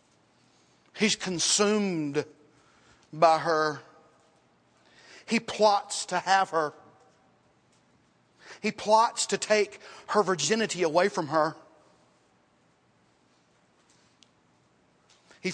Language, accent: English, American